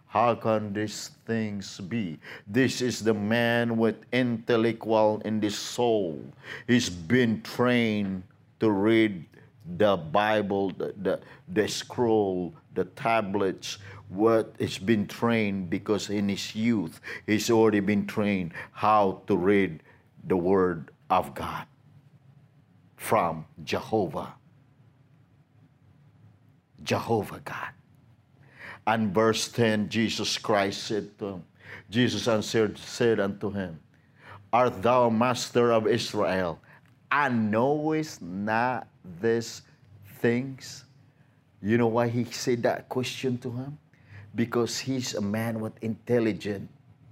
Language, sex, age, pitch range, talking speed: English, male, 50-69, 105-125 Hz, 110 wpm